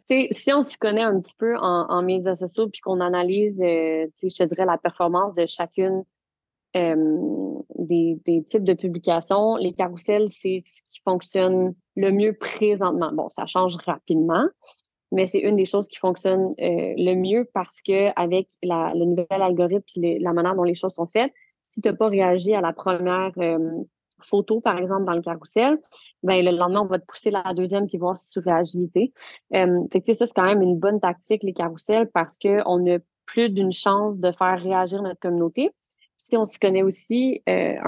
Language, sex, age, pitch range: French, female, 20-39, 180-210 Hz